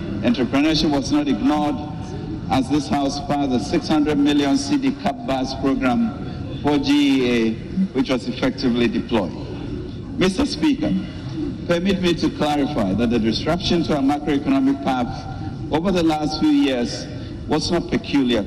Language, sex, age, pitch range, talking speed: English, male, 60-79, 120-190 Hz, 130 wpm